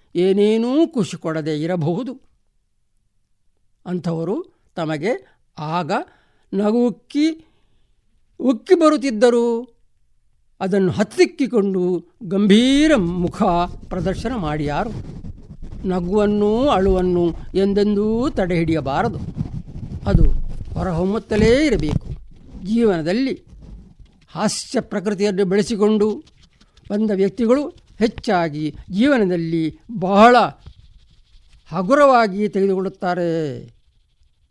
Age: 60-79